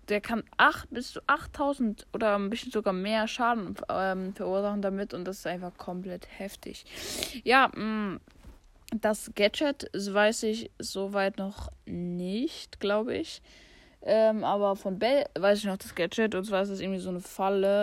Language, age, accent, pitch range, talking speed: German, 10-29, German, 190-225 Hz, 170 wpm